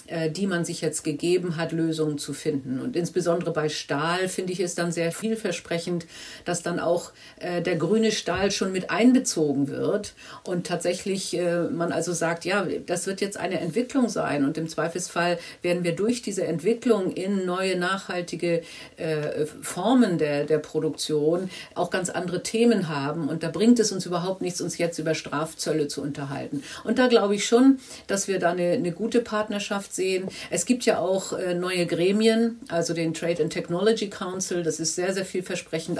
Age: 50-69